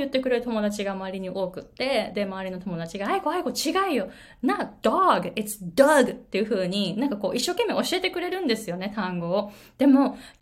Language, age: Japanese, 20-39